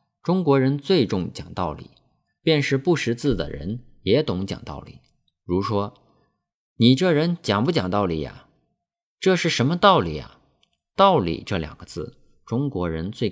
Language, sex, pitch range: Chinese, male, 105-150 Hz